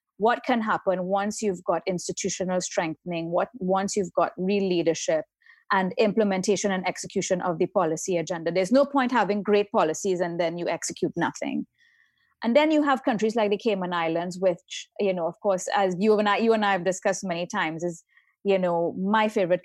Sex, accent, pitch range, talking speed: female, Indian, 175-220 Hz, 190 wpm